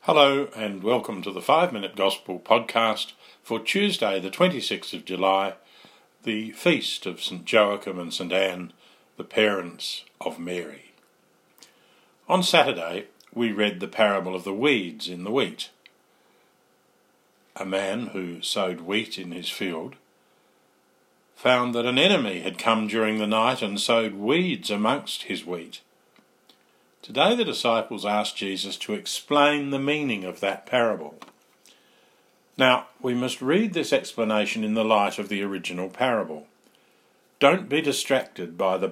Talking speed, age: 140 wpm, 50-69